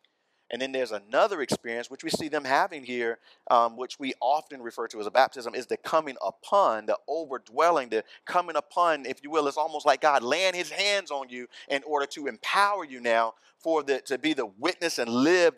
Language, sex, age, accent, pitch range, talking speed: English, male, 40-59, American, 125-180 Hz, 210 wpm